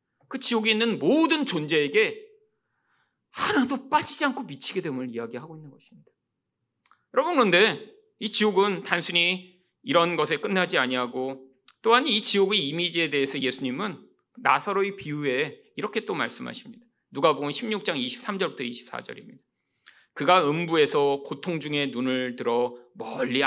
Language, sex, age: Korean, male, 40-59